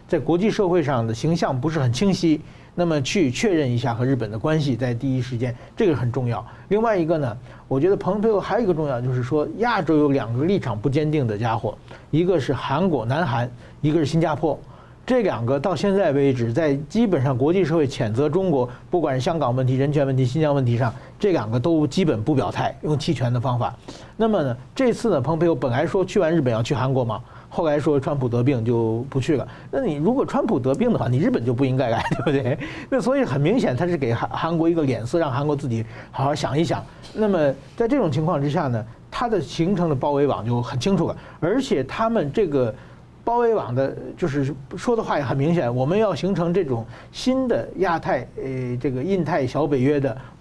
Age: 50-69